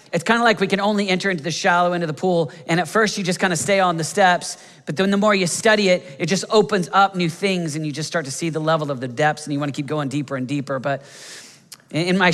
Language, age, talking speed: English, 40-59, 295 wpm